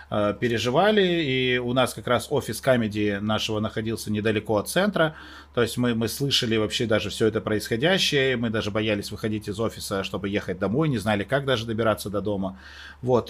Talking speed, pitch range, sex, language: 180 wpm, 110-145 Hz, male, Russian